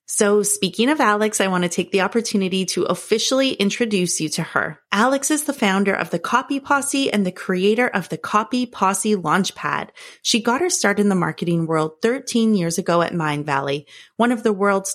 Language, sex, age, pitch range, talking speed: English, female, 30-49, 175-235 Hz, 195 wpm